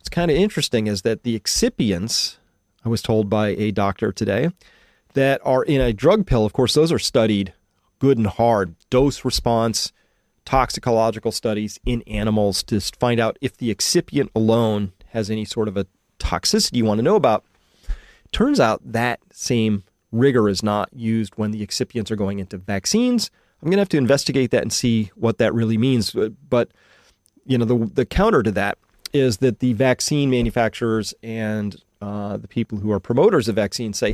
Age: 40-59